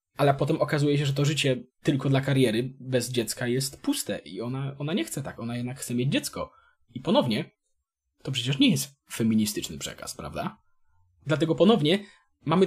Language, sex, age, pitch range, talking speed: Polish, male, 20-39, 125-170 Hz, 175 wpm